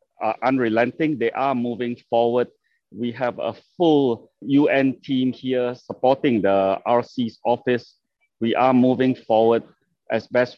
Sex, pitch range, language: male, 120-145 Hz, English